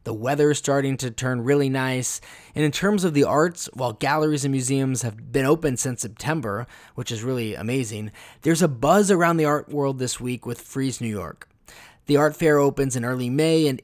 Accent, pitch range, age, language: American, 125-160 Hz, 20-39, English